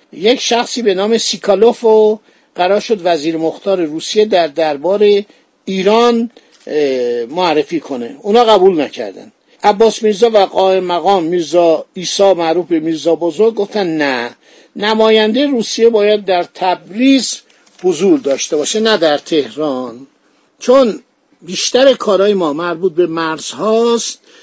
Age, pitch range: 50-69, 175-230 Hz